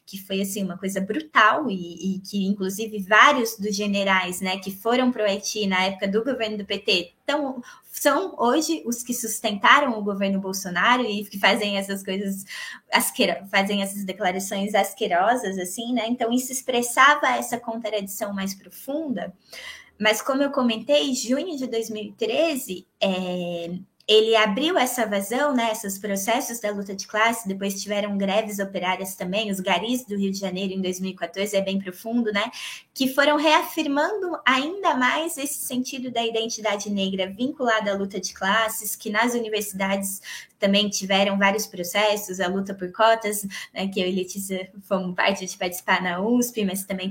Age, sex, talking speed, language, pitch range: 20-39, female, 160 wpm, Portuguese, 195-235 Hz